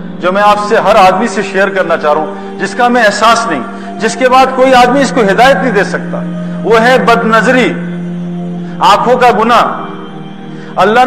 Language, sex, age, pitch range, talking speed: Urdu, male, 50-69, 180-225 Hz, 190 wpm